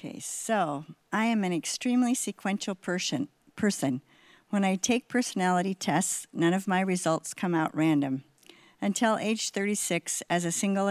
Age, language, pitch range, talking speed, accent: 50-69, English, 160-195 Hz, 145 wpm, American